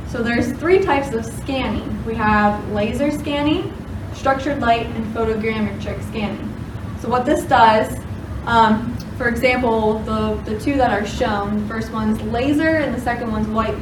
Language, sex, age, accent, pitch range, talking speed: English, female, 20-39, American, 205-245 Hz, 160 wpm